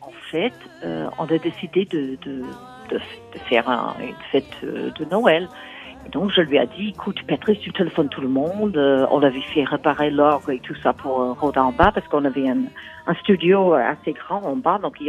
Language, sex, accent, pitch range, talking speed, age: French, female, French, 145-205 Hz, 225 wpm, 50-69